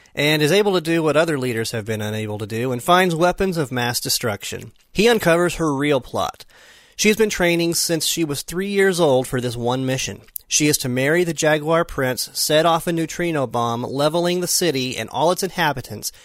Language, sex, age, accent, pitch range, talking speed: English, male, 30-49, American, 125-170 Hz, 210 wpm